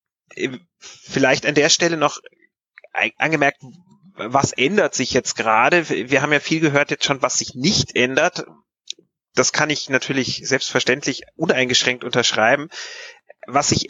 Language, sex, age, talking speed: German, male, 30-49, 135 wpm